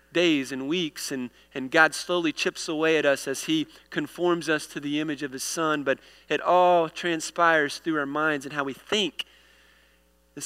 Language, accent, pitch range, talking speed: English, American, 145-175 Hz, 190 wpm